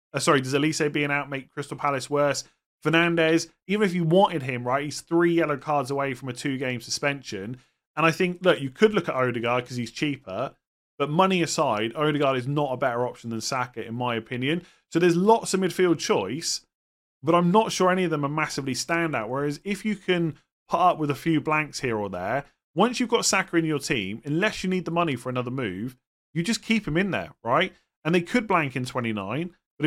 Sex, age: male, 30-49